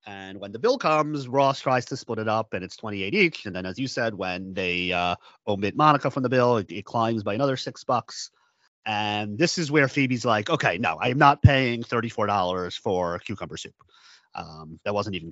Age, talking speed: 30-49, 220 wpm